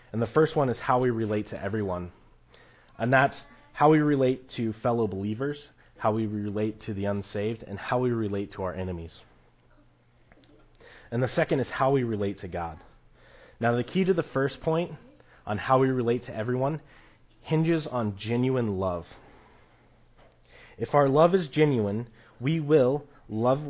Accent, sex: American, male